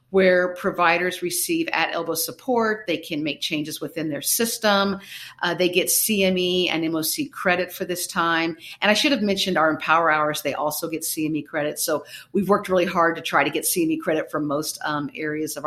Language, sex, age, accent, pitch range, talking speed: English, female, 50-69, American, 155-195 Hz, 195 wpm